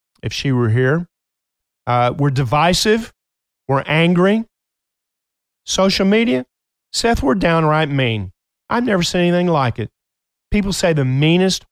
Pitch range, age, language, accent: 135-175 Hz, 40-59, English, American